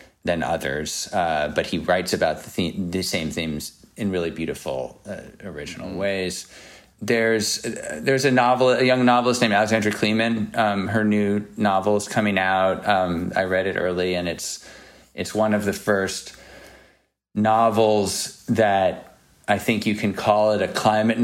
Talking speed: 160 wpm